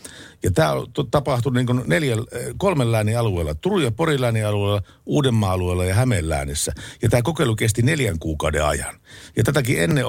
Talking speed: 150 wpm